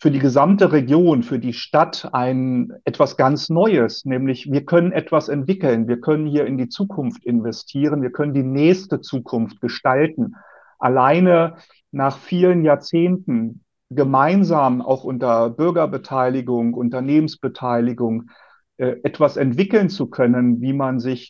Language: German